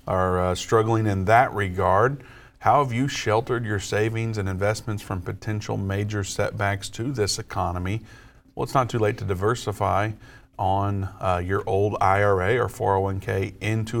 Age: 50-69